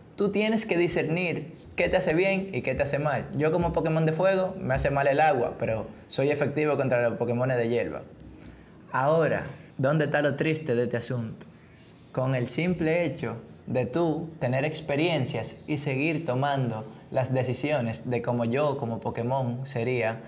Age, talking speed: 20-39, 170 wpm